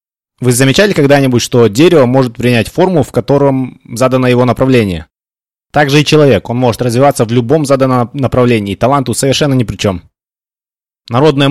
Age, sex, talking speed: 20-39, male, 160 wpm